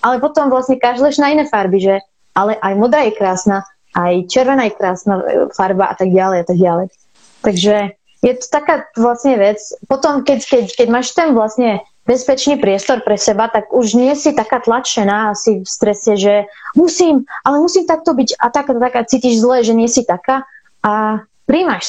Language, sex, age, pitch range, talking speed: Slovak, female, 20-39, 205-270 Hz, 190 wpm